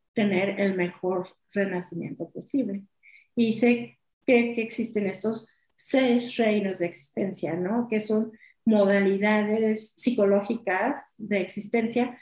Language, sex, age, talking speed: Spanish, female, 40-59, 110 wpm